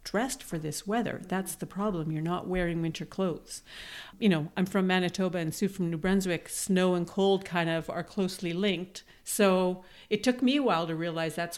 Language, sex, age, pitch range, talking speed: English, female, 50-69, 160-185 Hz, 200 wpm